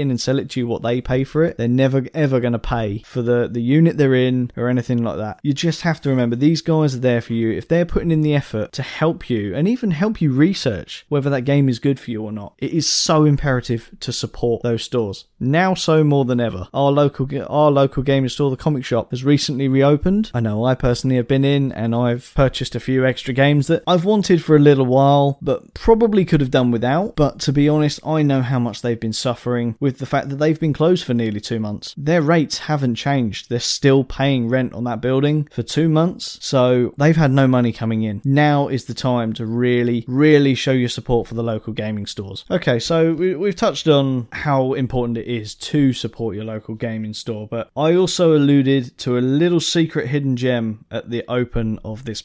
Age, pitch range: 20-39, 120-150 Hz